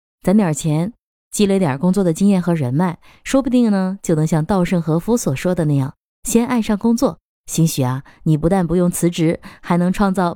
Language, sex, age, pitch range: Chinese, female, 20-39, 155-200 Hz